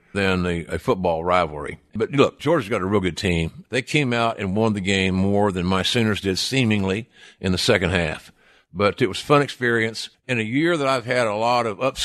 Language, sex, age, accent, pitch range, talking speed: English, male, 50-69, American, 95-120 Hz, 225 wpm